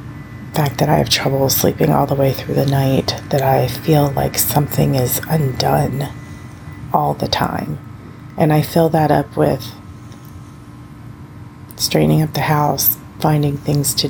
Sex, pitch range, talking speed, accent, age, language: female, 125-150 Hz, 150 wpm, American, 30-49, English